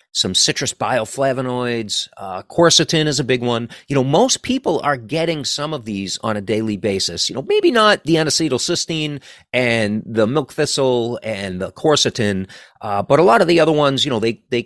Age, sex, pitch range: 40-59, male, 110-155 Hz